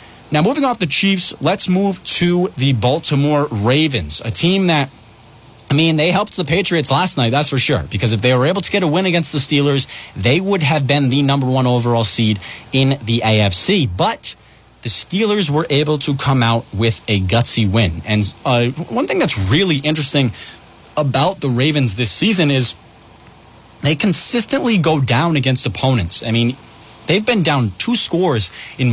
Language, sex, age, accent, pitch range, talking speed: English, male, 30-49, American, 115-160 Hz, 185 wpm